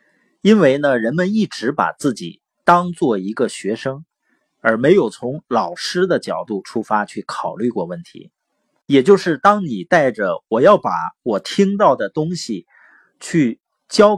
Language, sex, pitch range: Chinese, male, 135-200 Hz